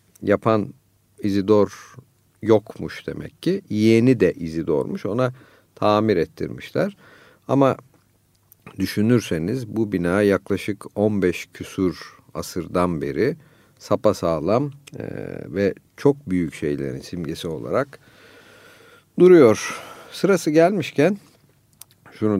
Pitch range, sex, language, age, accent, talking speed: 95-125 Hz, male, Turkish, 50-69, native, 85 wpm